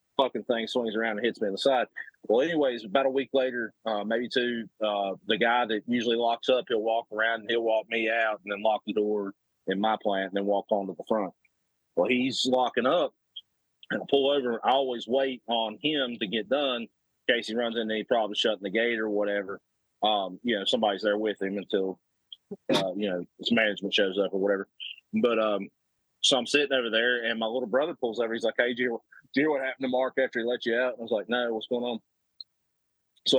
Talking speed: 230 wpm